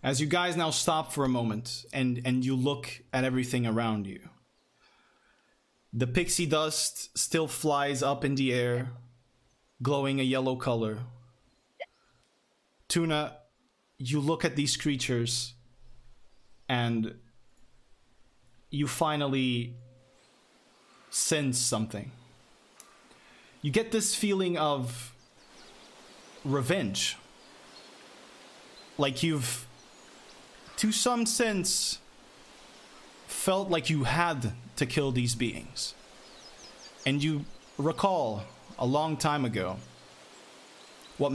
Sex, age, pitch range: male, 20-39, 120-150 Hz